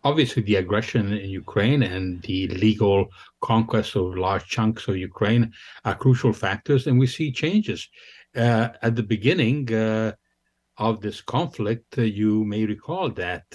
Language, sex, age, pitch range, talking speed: English, male, 60-79, 100-115 Hz, 150 wpm